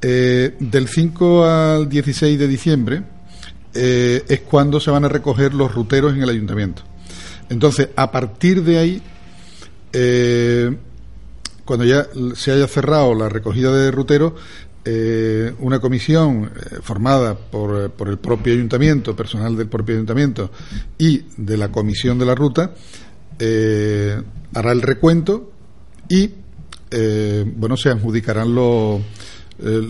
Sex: male